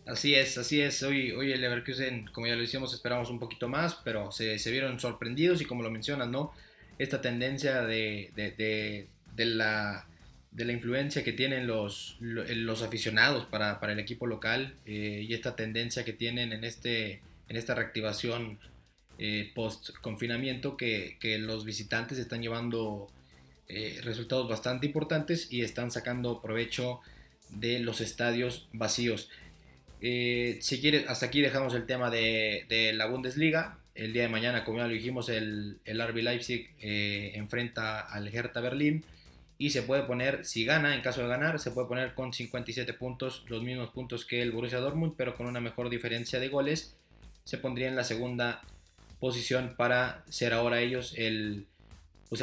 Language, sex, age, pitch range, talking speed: Spanish, male, 20-39, 110-125 Hz, 170 wpm